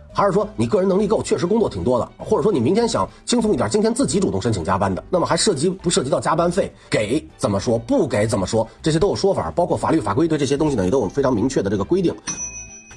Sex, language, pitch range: male, Chinese, 120-200 Hz